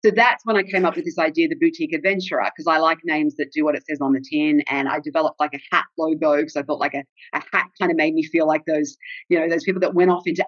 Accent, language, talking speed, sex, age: Australian, English, 305 wpm, female, 40-59